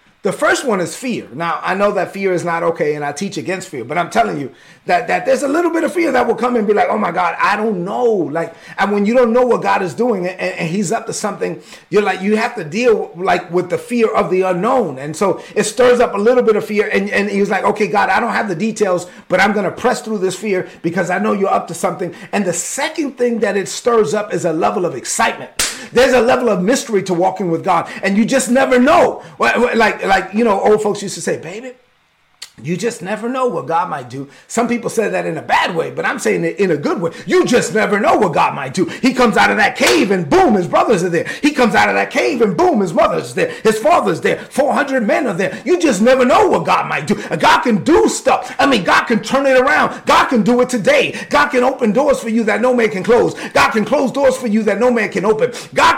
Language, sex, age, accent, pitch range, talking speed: English, male, 30-49, American, 195-250 Hz, 275 wpm